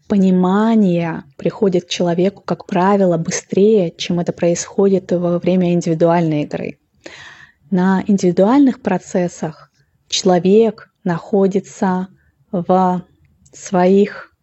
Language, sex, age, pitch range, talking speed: Russian, female, 20-39, 180-200 Hz, 85 wpm